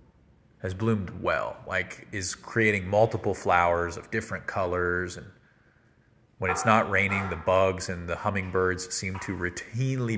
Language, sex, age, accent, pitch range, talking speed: English, male, 30-49, American, 90-110 Hz, 140 wpm